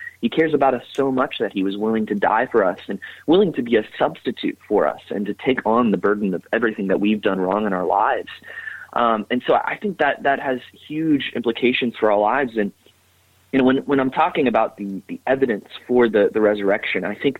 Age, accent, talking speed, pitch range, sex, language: 20-39, American, 230 wpm, 100-120 Hz, male, English